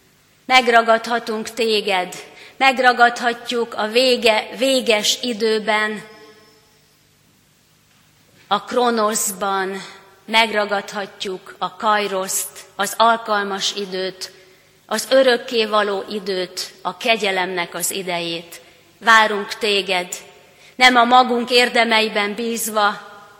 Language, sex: Hungarian, female